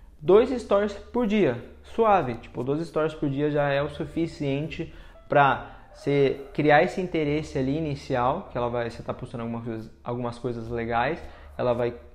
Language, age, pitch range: Portuguese, 20-39, 120-165 Hz